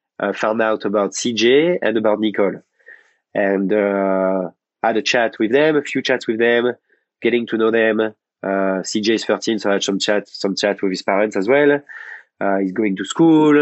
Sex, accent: male, French